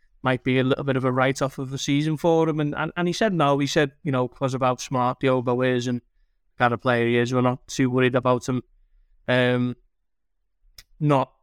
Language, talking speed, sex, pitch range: English, 235 wpm, male, 130-145 Hz